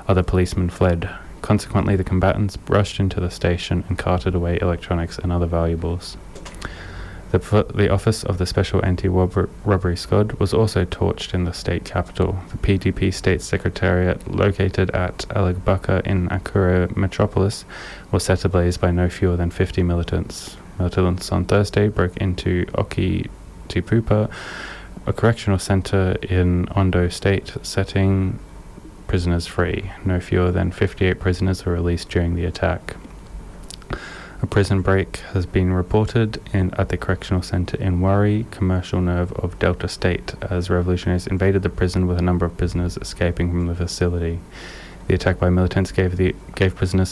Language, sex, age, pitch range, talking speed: English, male, 20-39, 90-95 Hz, 150 wpm